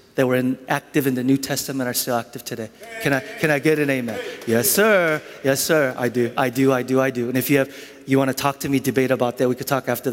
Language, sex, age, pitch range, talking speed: English, male, 30-49, 125-145 Hz, 285 wpm